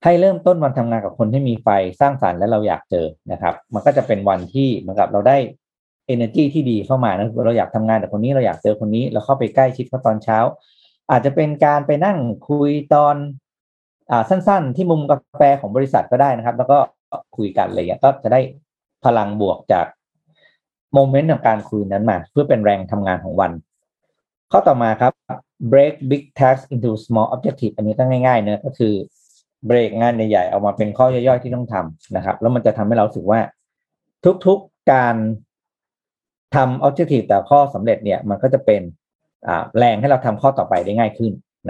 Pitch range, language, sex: 110-140 Hz, Thai, male